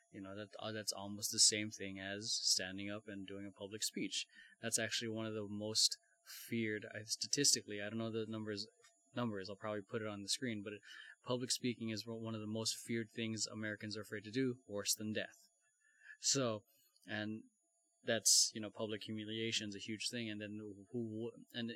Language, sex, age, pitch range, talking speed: English, male, 20-39, 105-125 Hz, 195 wpm